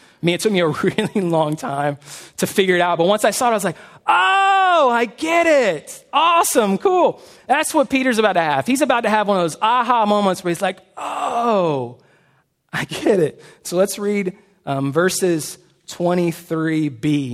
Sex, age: male, 30-49